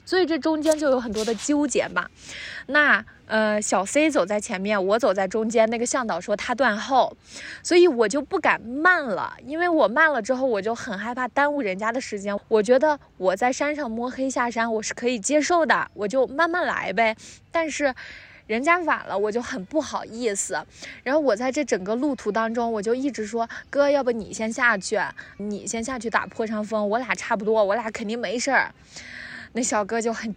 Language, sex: Chinese, female